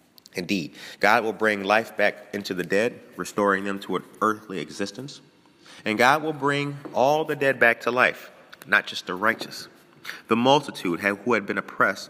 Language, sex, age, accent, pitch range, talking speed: English, male, 30-49, American, 90-115 Hz, 175 wpm